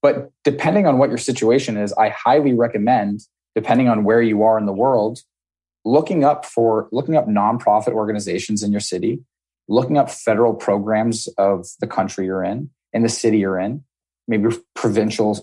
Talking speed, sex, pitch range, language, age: 170 wpm, male, 105-120 Hz, English, 20-39